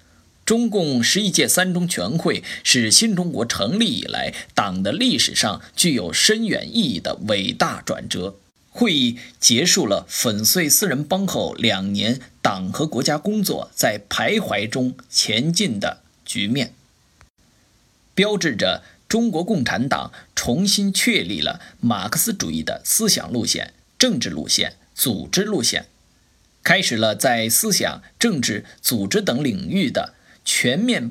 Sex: male